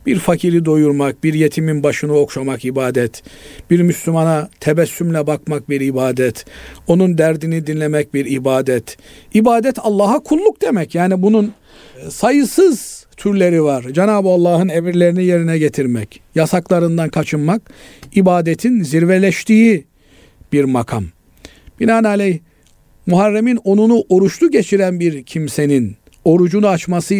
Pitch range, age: 130-185 Hz, 50-69